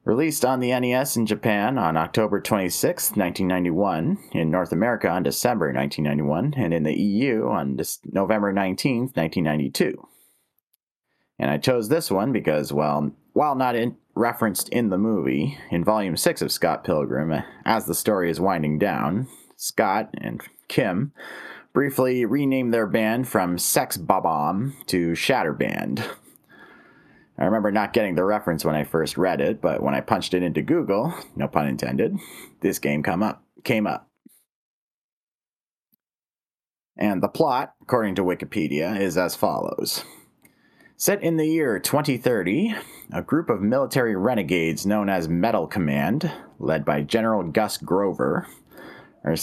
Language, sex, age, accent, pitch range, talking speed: English, male, 30-49, American, 80-115 Hz, 140 wpm